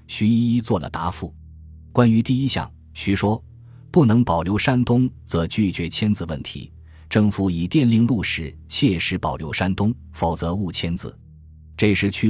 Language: Chinese